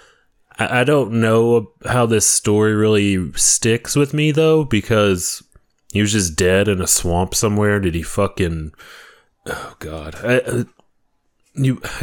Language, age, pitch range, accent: English, 20-39, 90-105 Hz, American